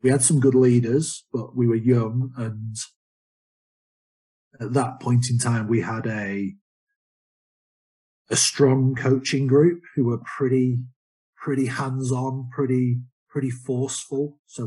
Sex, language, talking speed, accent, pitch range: male, English, 130 wpm, British, 105-125 Hz